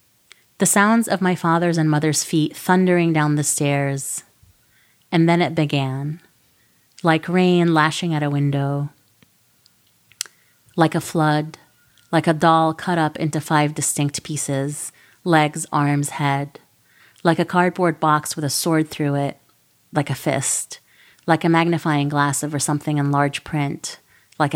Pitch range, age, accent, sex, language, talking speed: 145-175 Hz, 30-49, American, female, English, 145 wpm